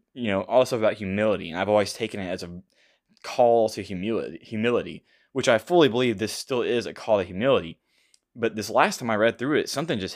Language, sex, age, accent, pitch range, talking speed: English, male, 20-39, American, 95-115 Hz, 215 wpm